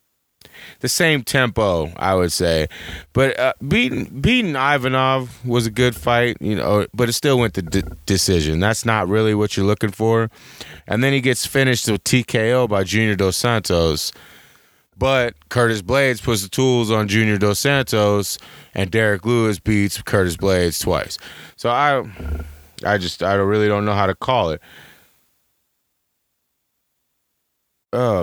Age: 30-49